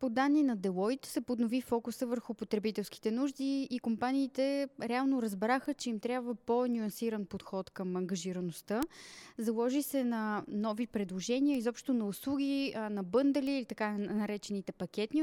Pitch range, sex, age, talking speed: 200-255 Hz, female, 20-39, 140 wpm